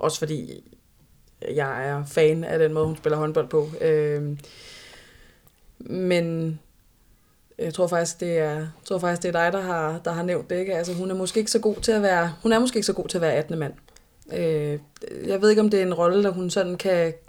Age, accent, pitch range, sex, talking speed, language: 20-39, native, 150-185 Hz, female, 210 wpm, Danish